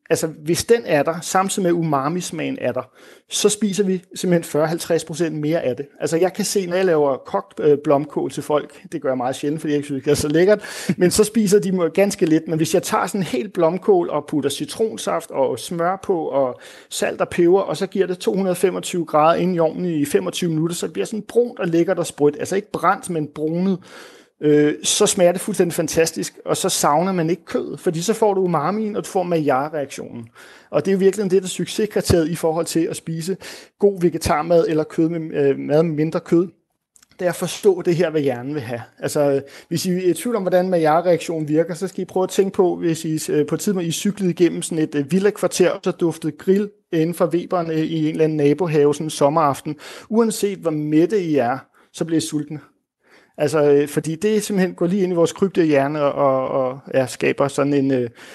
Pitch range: 150-185 Hz